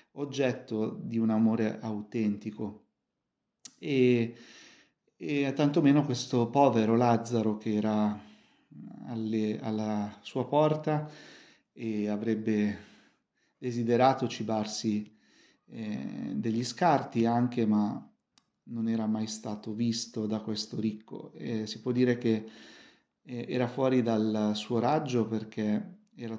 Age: 30-49